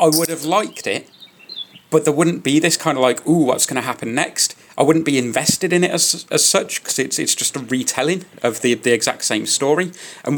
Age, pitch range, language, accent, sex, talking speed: 30-49, 115-160 Hz, English, British, male, 235 wpm